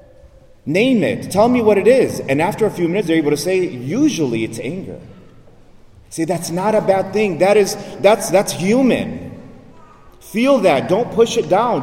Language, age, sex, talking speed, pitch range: English, 30-49, male, 185 wpm, 140-210 Hz